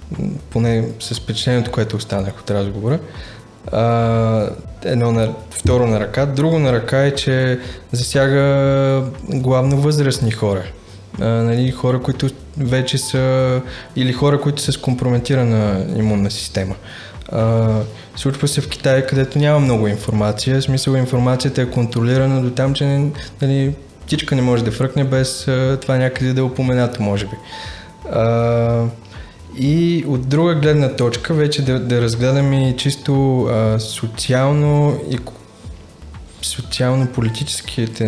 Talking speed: 120 wpm